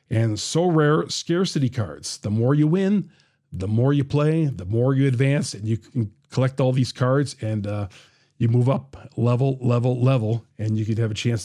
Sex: male